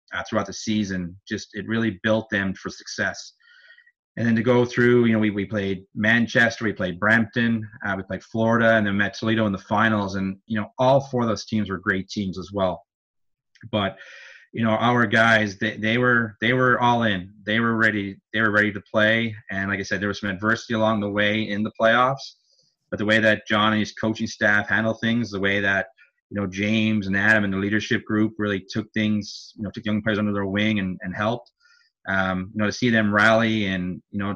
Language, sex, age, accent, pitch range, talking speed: English, male, 30-49, American, 100-110 Hz, 225 wpm